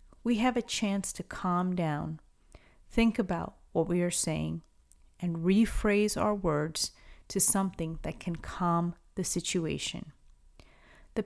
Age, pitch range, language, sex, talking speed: 30-49, 175-210 Hz, English, female, 135 wpm